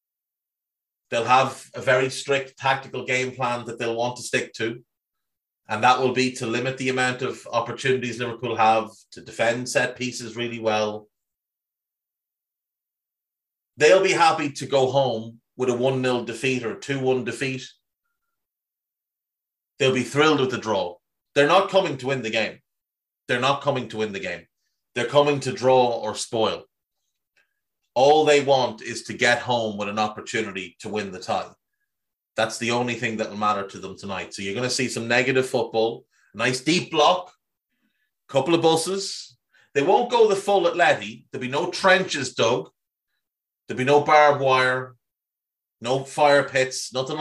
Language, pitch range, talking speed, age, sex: English, 120-140 Hz, 165 wpm, 30-49, male